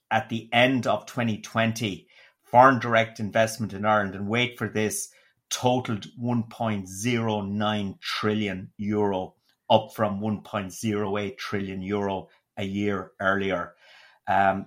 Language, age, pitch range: English, 30-49, 95-110 Hz